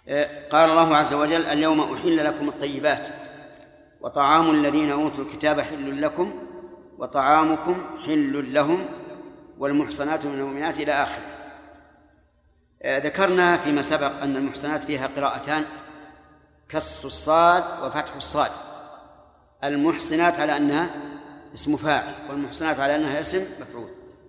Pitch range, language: 140-170 Hz, Arabic